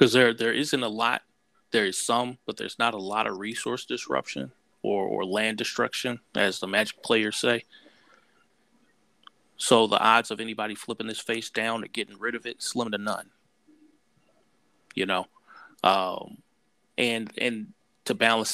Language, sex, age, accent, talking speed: English, male, 30-49, American, 160 wpm